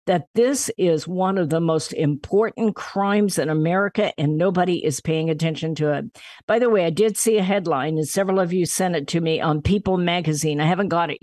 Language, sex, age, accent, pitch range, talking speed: English, female, 50-69, American, 165-215 Hz, 220 wpm